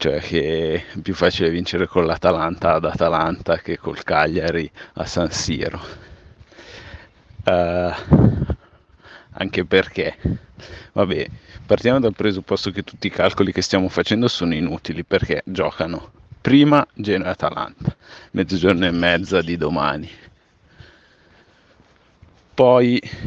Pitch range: 95-115 Hz